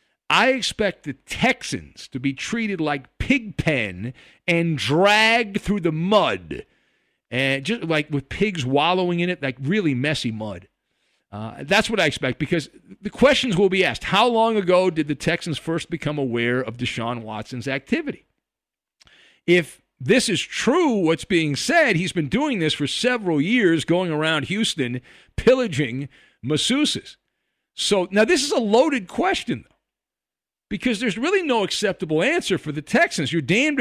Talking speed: 160 wpm